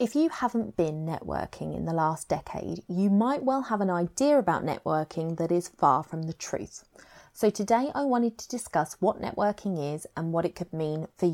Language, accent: English, British